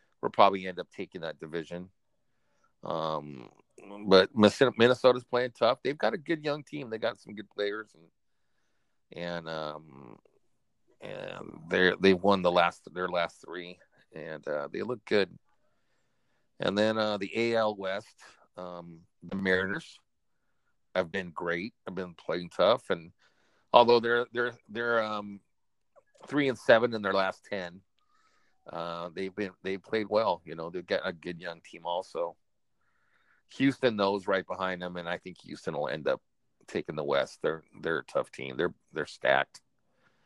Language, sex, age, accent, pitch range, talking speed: English, male, 50-69, American, 90-110 Hz, 160 wpm